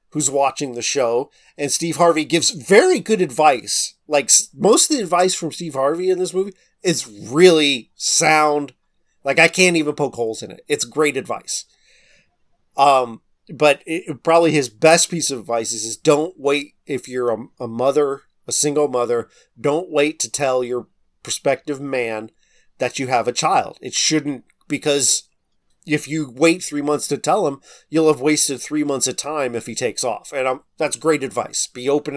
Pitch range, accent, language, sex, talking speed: 140-175 Hz, American, English, male, 180 wpm